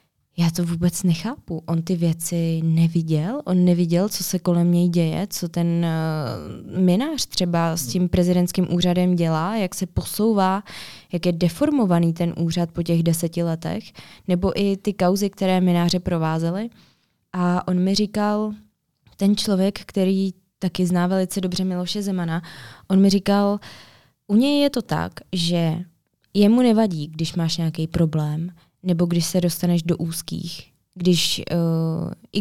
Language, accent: Czech, native